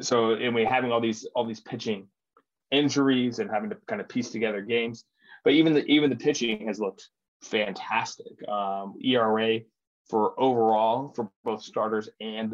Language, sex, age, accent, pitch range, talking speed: English, male, 20-39, American, 105-130 Hz, 165 wpm